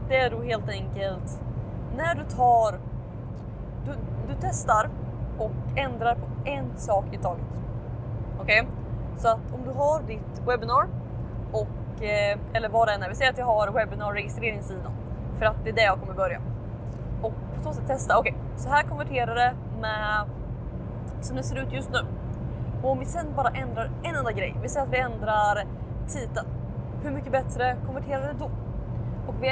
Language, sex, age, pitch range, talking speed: Swedish, female, 20-39, 115-125 Hz, 175 wpm